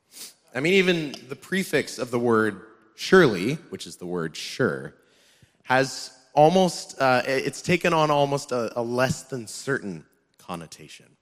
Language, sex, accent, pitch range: English, male, American, 105-150 Hz